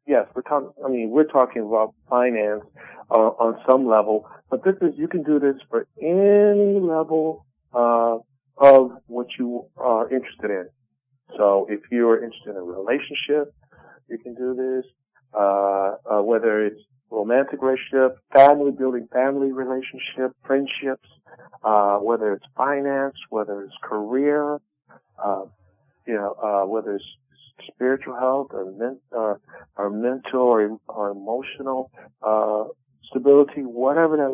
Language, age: English, 50-69